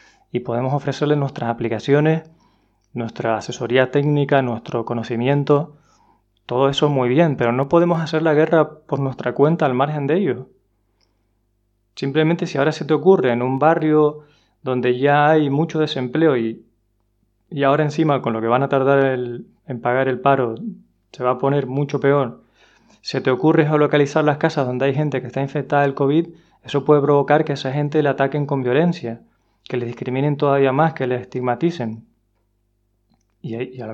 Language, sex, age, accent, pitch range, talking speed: Spanish, male, 20-39, Spanish, 120-145 Hz, 175 wpm